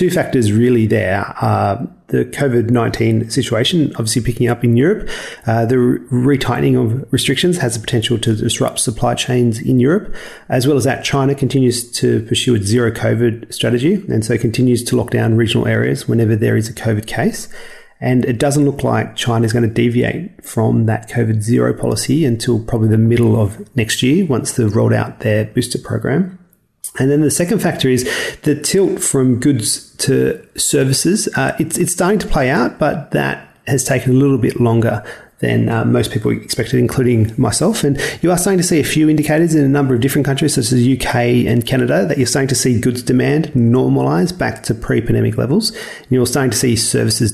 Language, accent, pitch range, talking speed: English, Australian, 115-140 Hz, 195 wpm